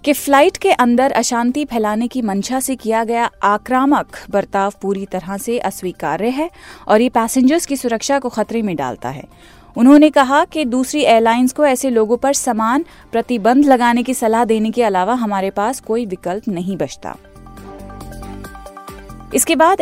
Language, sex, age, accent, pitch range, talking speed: Hindi, female, 30-49, native, 205-270 Hz, 160 wpm